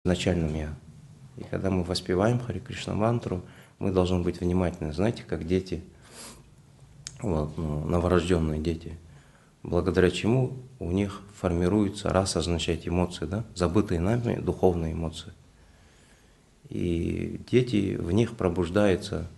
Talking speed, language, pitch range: 120 wpm, Russian, 85-115 Hz